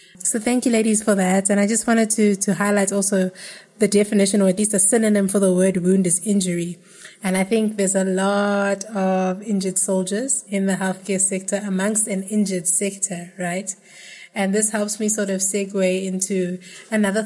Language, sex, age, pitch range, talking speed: English, female, 20-39, 190-210 Hz, 190 wpm